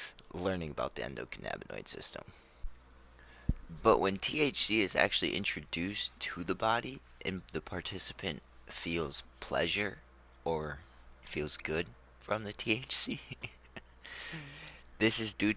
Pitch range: 65-90 Hz